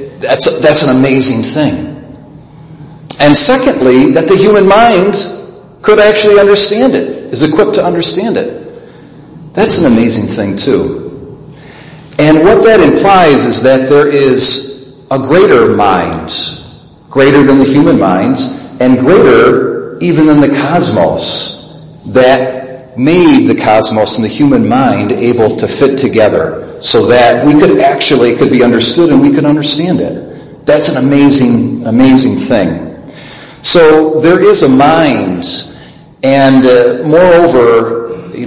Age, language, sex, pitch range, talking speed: 50-69, English, male, 125-165 Hz, 135 wpm